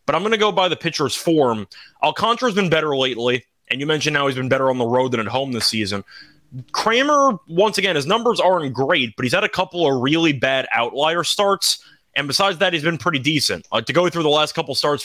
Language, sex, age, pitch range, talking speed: English, male, 20-39, 135-175 Hz, 240 wpm